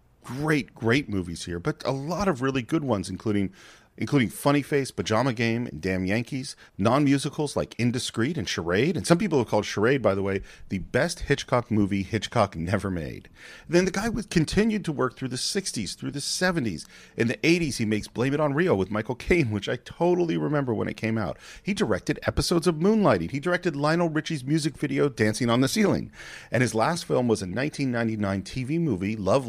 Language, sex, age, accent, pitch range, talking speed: English, male, 40-59, American, 105-145 Hz, 200 wpm